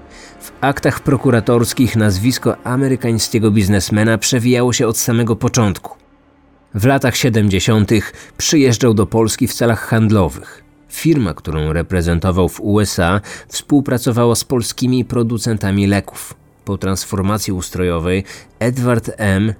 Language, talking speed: Polish, 105 wpm